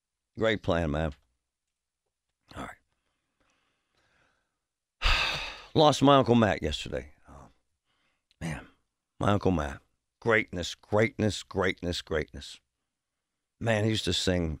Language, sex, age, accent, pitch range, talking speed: English, male, 60-79, American, 65-110 Hz, 95 wpm